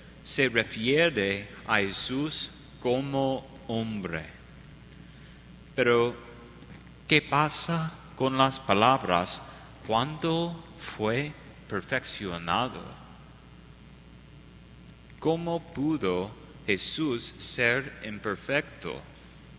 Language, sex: English, male